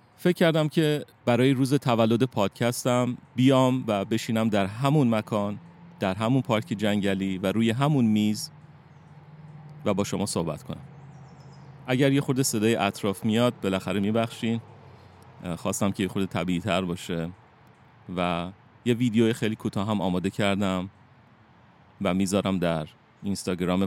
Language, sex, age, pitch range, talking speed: Persian, male, 30-49, 100-130 Hz, 130 wpm